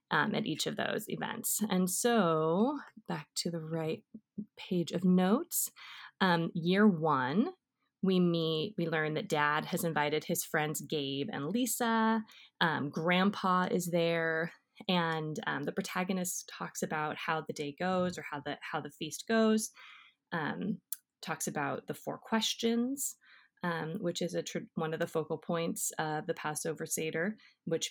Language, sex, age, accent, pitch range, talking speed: English, female, 20-39, American, 160-215 Hz, 155 wpm